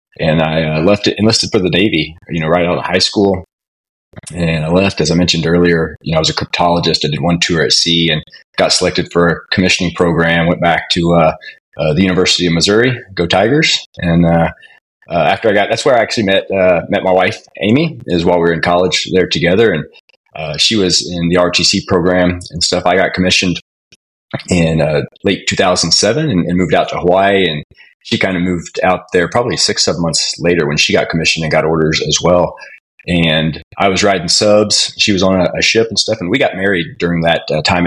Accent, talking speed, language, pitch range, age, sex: American, 230 wpm, English, 85-95 Hz, 30-49, male